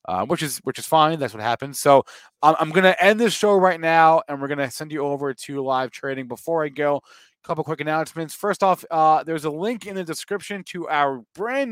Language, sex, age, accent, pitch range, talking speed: English, male, 30-49, American, 140-200 Hz, 235 wpm